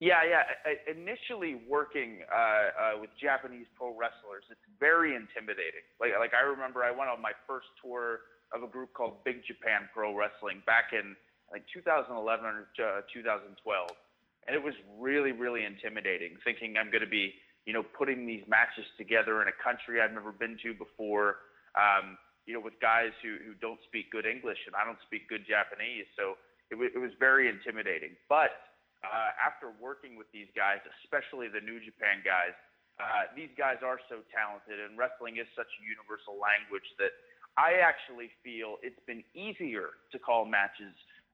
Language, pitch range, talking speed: English, 110-130 Hz, 175 wpm